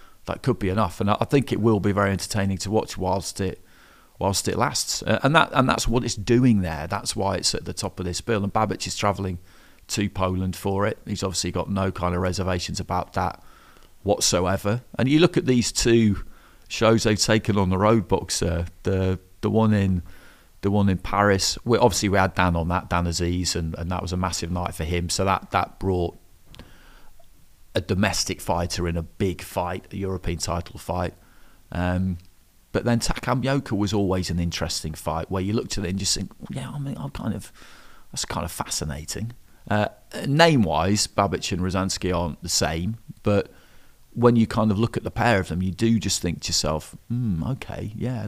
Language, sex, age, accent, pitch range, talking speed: English, male, 30-49, British, 90-110 Hz, 205 wpm